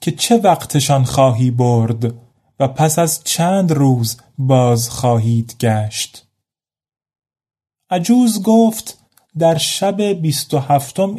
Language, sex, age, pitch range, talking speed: Persian, male, 30-49, 120-170 Hz, 105 wpm